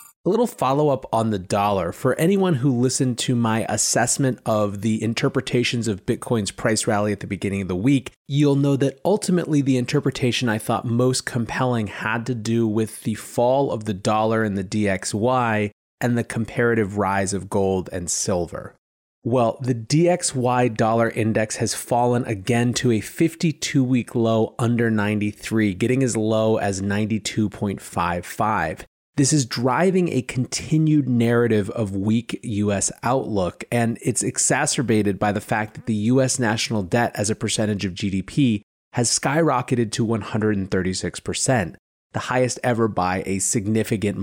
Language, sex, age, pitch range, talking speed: English, male, 30-49, 105-130 Hz, 150 wpm